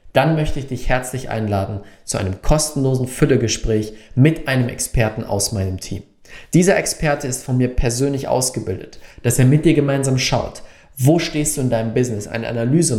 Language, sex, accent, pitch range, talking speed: German, male, German, 115-140 Hz, 170 wpm